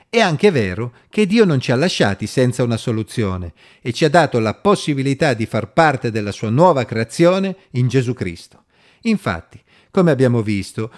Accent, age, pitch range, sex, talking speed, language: native, 40-59, 115-180 Hz, male, 175 wpm, Italian